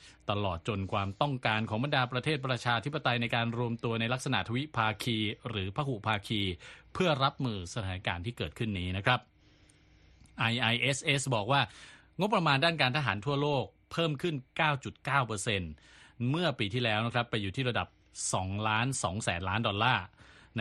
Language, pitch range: Thai, 100-130 Hz